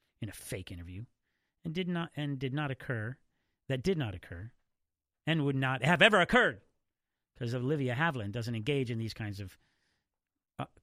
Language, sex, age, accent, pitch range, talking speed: English, male, 40-59, American, 110-150 Hz, 170 wpm